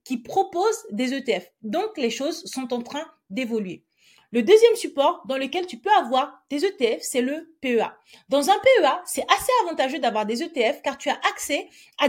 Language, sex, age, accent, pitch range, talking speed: French, female, 30-49, French, 240-335 Hz, 190 wpm